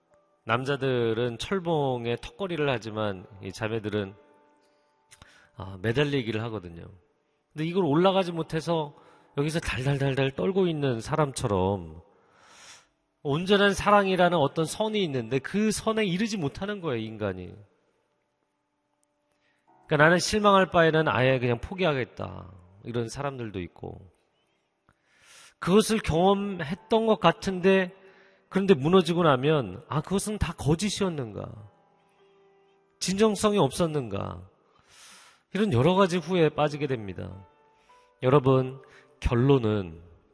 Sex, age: male, 40-59